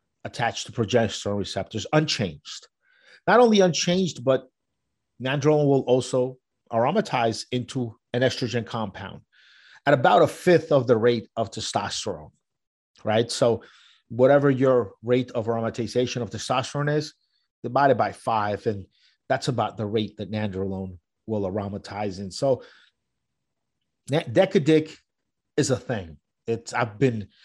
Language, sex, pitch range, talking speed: English, male, 100-130 Hz, 120 wpm